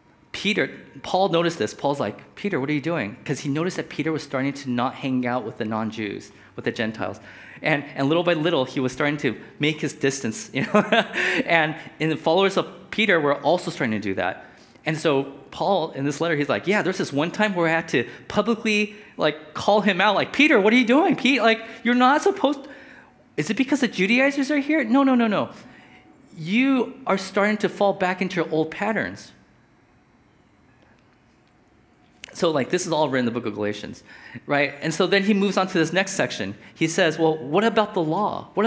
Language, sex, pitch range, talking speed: English, male, 150-210 Hz, 215 wpm